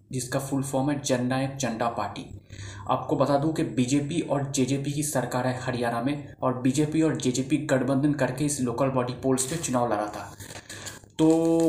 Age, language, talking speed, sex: 20-39, Hindi, 175 wpm, male